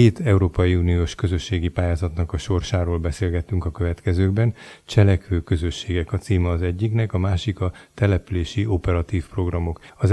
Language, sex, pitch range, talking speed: Hungarian, male, 90-100 Hz, 135 wpm